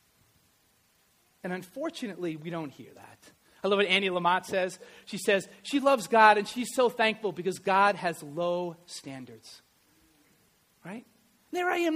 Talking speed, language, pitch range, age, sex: 155 wpm, English, 220-335 Hz, 40-59, male